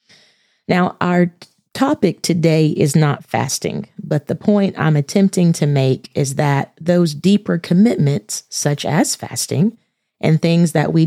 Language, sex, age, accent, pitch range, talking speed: English, female, 30-49, American, 150-195 Hz, 140 wpm